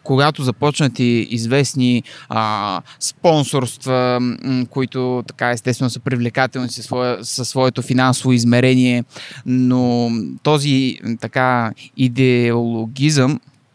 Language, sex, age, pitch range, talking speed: Bulgarian, male, 20-39, 130-155 Hz, 85 wpm